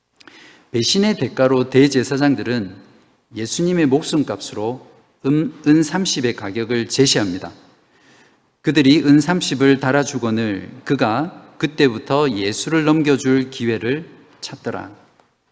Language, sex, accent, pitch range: Korean, male, native, 115-155 Hz